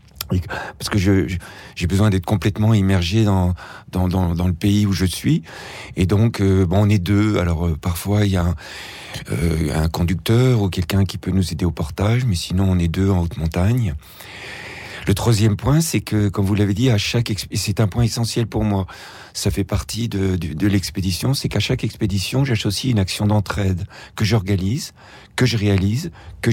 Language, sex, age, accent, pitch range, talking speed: French, male, 50-69, French, 95-115 Hz, 205 wpm